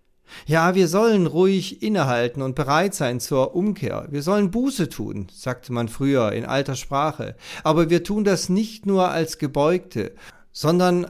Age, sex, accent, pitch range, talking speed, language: 40-59, male, German, 120-160 Hz, 155 wpm, German